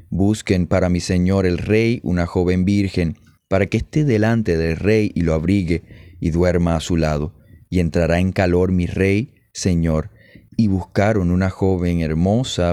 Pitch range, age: 85-100 Hz, 30-49